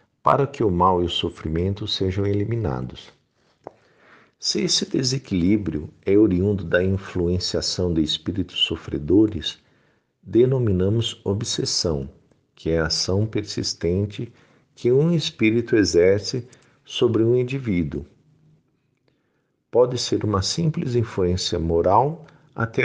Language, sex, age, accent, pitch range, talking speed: Portuguese, male, 50-69, Brazilian, 90-120 Hz, 105 wpm